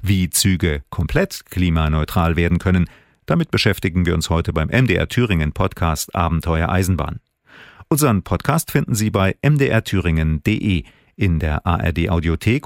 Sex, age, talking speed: male, 40-59, 130 wpm